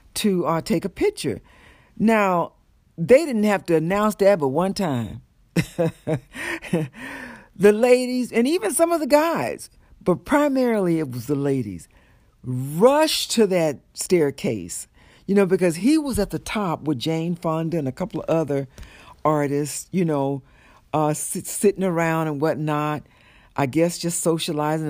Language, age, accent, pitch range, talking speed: English, 60-79, American, 145-195 Hz, 145 wpm